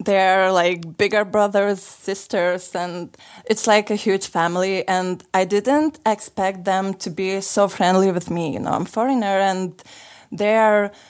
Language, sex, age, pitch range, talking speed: English, female, 20-39, 180-200 Hz, 155 wpm